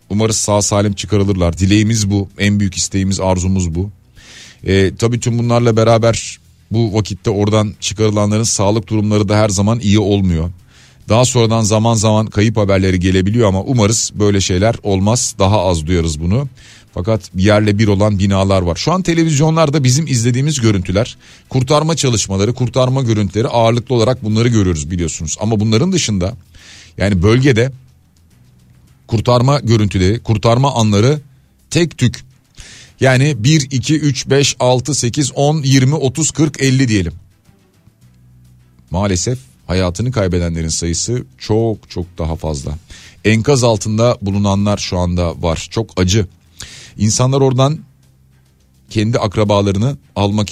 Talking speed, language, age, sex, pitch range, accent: 130 wpm, Turkish, 40-59, male, 95-120 Hz, native